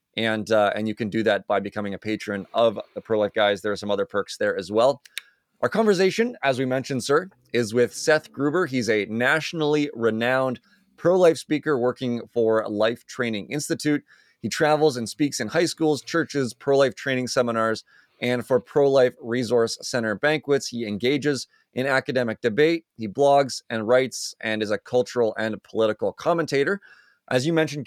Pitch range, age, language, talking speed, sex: 110-145 Hz, 30-49, English, 170 wpm, male